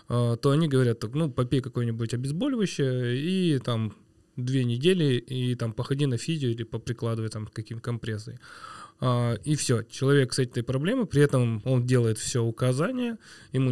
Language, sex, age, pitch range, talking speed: Russian, male, 20-39, 115-140 Hz, 150 wpm